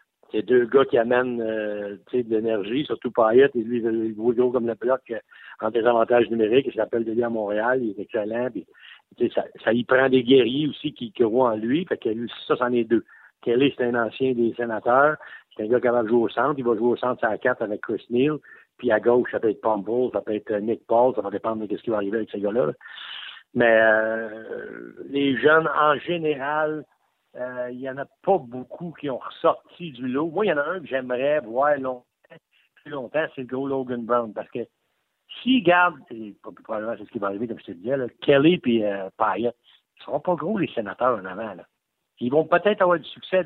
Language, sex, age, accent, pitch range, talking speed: French, male, 60-79, French, 115-150 Hz, 225 wpm